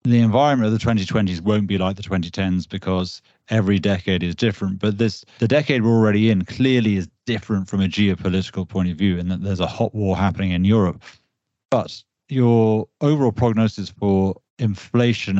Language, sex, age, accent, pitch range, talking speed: English, male, 30-49, British, 95-110 Hz, 180 wpm